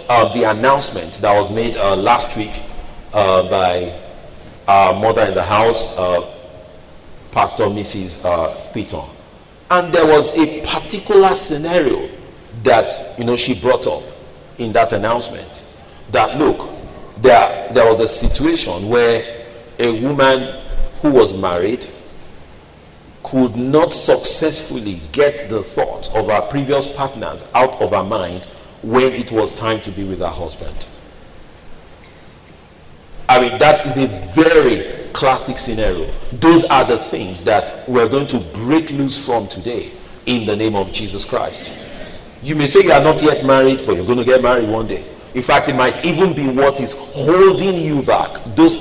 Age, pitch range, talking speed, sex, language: 40-59, 100-150 Hz, 155 wpm, male, English